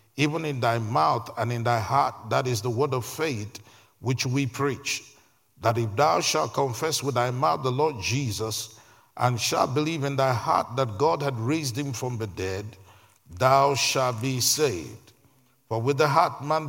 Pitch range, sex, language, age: 120-150 Hz, male, English, 50-69